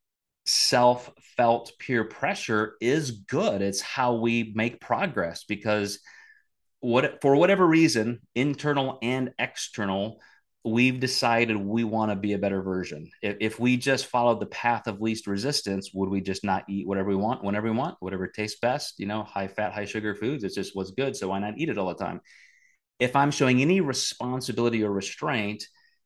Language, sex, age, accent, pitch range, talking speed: English, male, 30-49, American, 100-125 Hz, 175 wpm